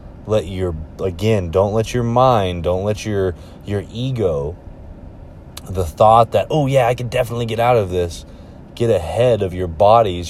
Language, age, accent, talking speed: English, 20-39, American, 170 wpm